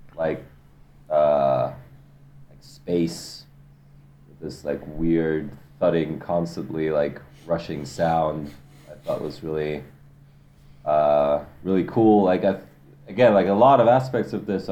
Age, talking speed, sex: 30-49, 120 wpm, male